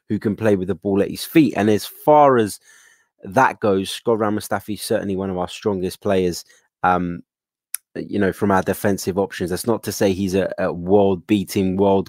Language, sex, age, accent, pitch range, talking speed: English, male, 20-39, British, 95-115 Hz, 205 wpm